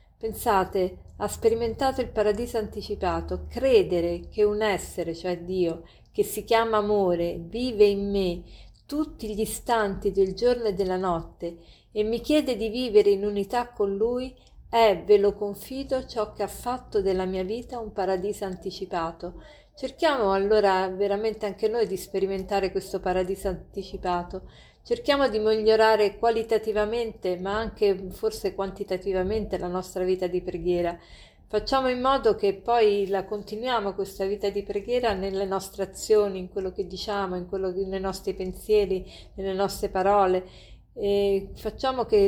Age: 50-69